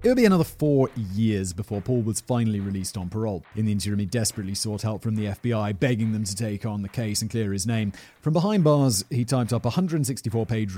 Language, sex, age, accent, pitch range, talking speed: English, male, 30-49, British, 100-135 Hz, 235 wpm